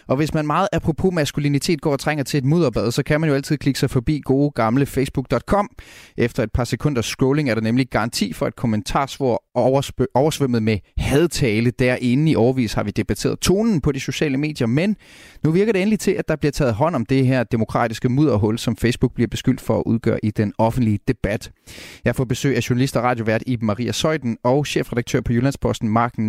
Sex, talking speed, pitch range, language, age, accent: male, 210 wpm, 115-145 Hz, Danish, 30-49, native